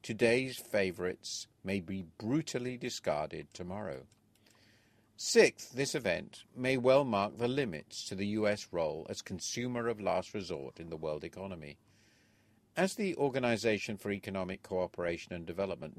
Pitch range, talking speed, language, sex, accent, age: 90-120 Hz, 135 wpm, English, male, British, 50-69